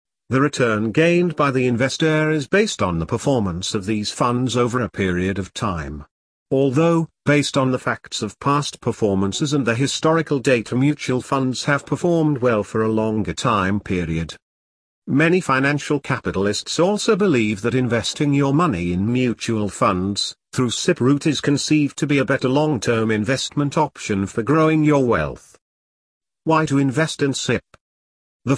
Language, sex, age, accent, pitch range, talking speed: English, male, 40-59, British, 100-145 Hz, 160 wpm